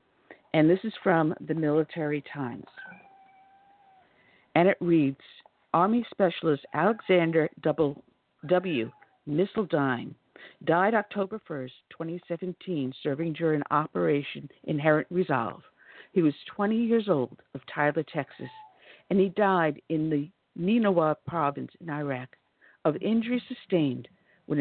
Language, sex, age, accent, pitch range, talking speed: English, female, 60-79, American, 150-190 Hz, 110 wpm